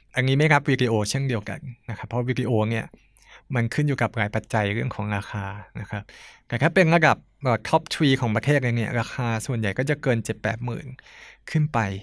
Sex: male